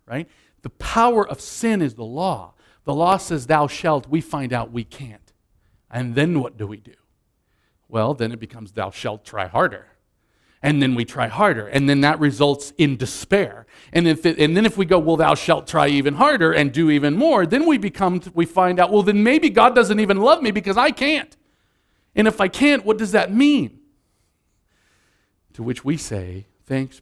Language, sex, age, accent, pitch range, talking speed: English, male, 50-69, American, 110-175 Hz, 200 wpm